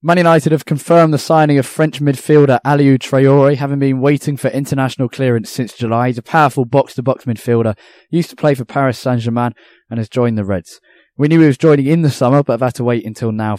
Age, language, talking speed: 10-29, English, 225 wpm